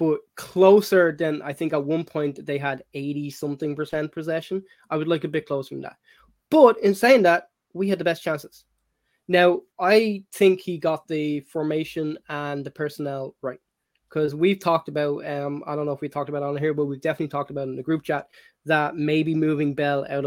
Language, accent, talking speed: English, Irish, 210 wpm